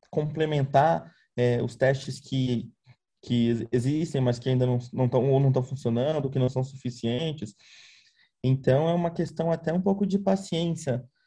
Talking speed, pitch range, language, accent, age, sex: 145 wpm, 120-145 Hz, Portuguese, Brazilian, 20-39, male